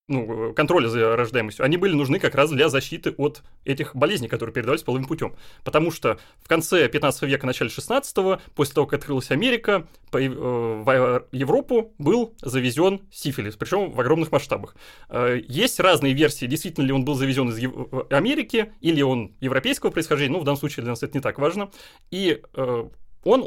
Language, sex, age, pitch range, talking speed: Russian, male, 20-39, 130-160 Hz, 170 wpm